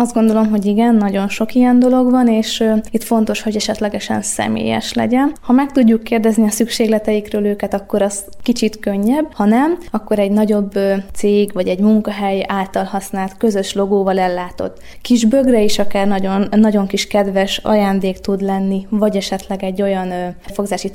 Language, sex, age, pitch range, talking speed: Hungarian, female, 20-39, 195-225 Hz, 170 wpm